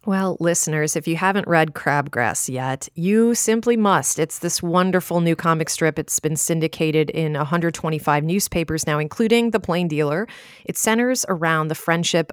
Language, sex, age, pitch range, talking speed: English, female, 30-49, 145-175 Hz, 160 wpm